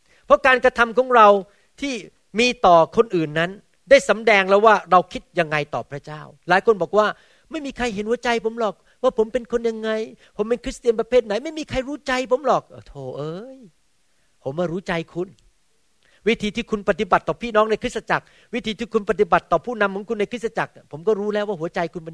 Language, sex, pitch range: Thai, male, 155-225 Hz